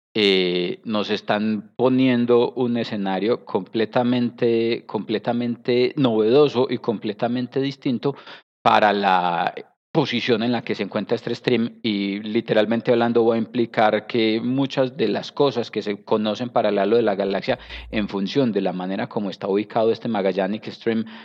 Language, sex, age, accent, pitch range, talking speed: Spanish, male, 30-49, Colombian, 105-125 Hz, 150 wpm